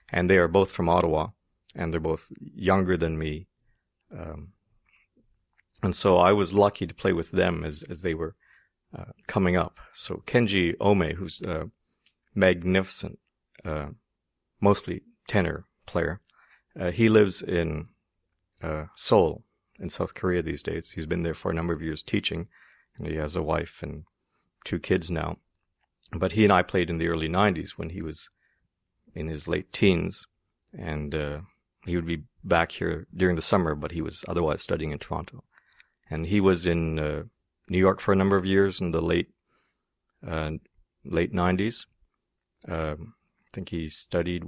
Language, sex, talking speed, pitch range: English, male, 165 wpm, 80-95 Hz